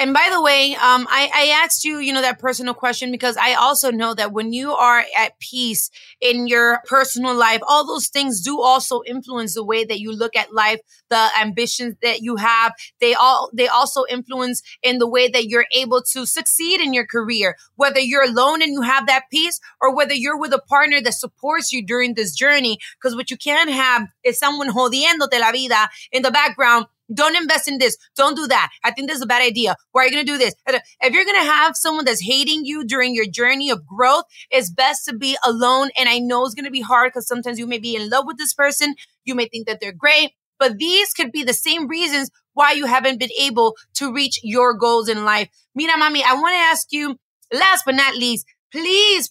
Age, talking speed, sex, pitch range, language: 30-49, 230 wpm, female, 240-290 Hz, English